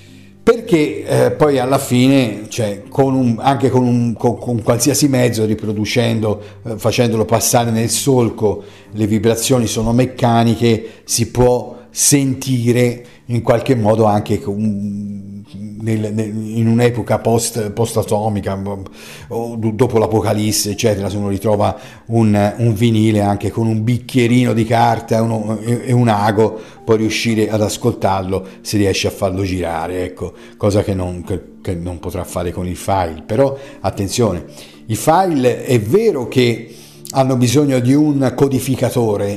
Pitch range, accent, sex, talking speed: 105-120 Hz, native, male, 125 wpm